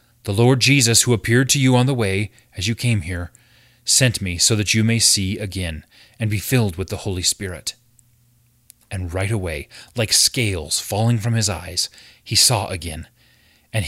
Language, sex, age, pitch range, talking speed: English, male, 30-49, 100-125 Hz, 180 wpm